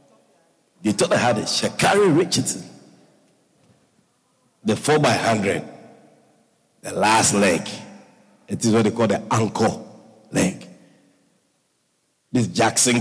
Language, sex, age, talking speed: English, male, 50-69, 110 wpm